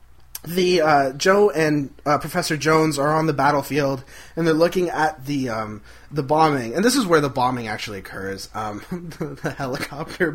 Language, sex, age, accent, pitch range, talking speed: English, male, 20-39, American, 130-180 Hz, 180 wpm